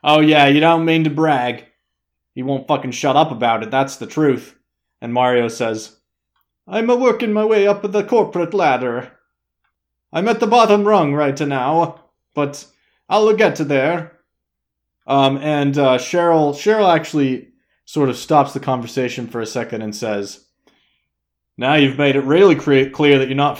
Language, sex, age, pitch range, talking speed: English, male, 20-39, 115-150 Hz, 170 wpm